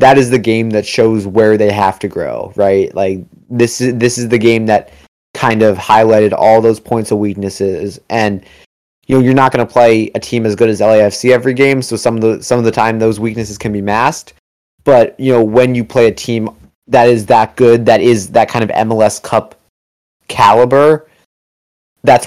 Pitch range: 100-120 Hz